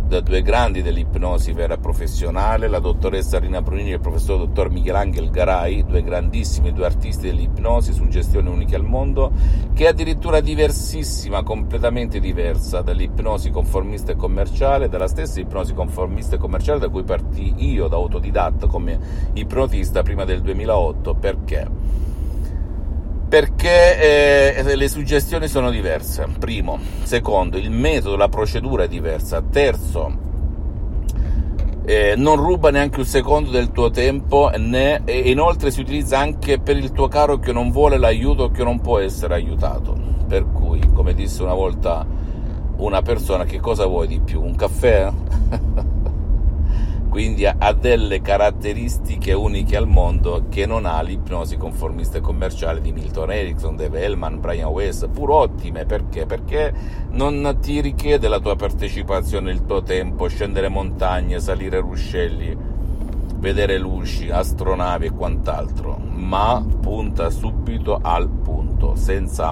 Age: 50-69